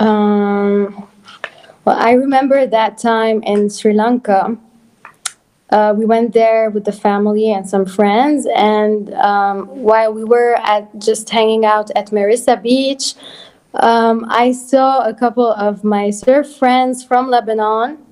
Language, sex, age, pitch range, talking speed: English, female, 20-39, 215-255 Hz, 140 wpm